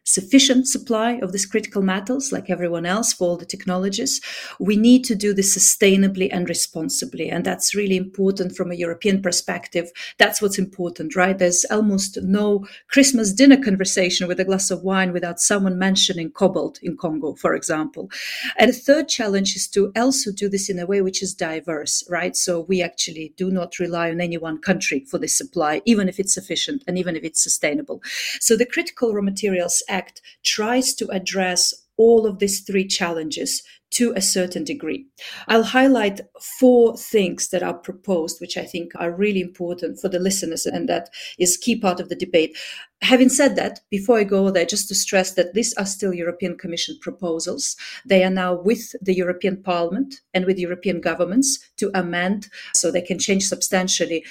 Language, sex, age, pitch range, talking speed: English, female, 40-59, 175-215 Hz, 185 wpm